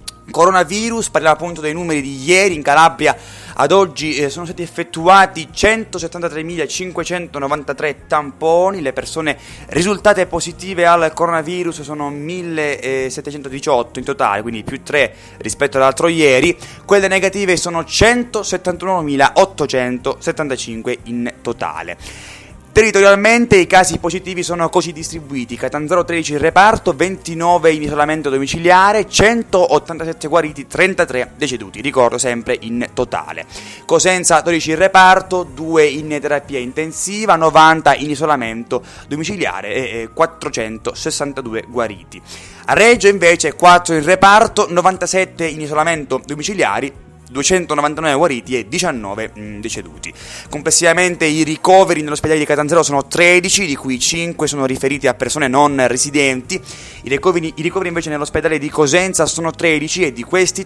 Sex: male